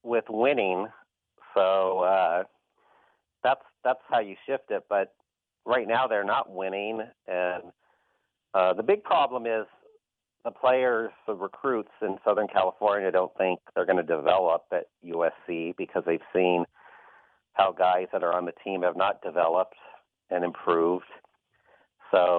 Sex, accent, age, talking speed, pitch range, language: male, American, 40-59, 140 wpm, 90-115 Hz, English